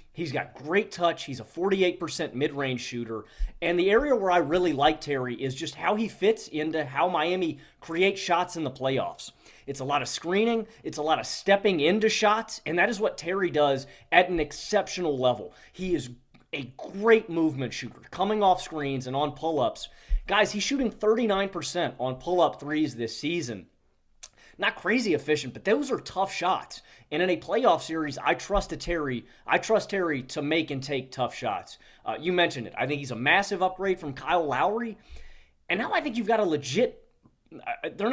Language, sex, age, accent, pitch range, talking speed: English, male, 30-49, American, 145-195 Hz, 195 wpm